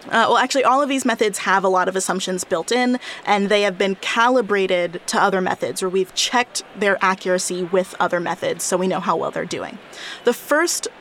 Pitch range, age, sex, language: 190-235 Hz, 20-39, female, English